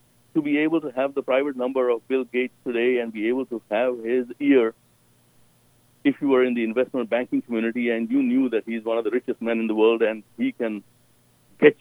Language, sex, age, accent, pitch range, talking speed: English, male, 60-79, Indian, 120-165 Hz, 225 wpm